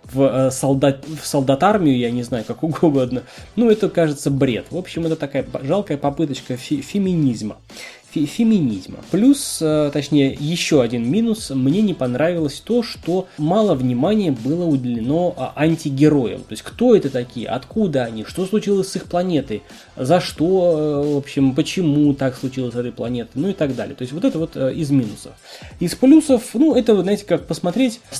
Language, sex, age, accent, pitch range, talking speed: Russian, male, 20-39, native, 130-180 Hz, 160 wpm